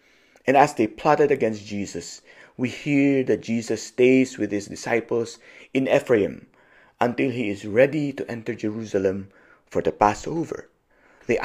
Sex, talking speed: male, 140 wpm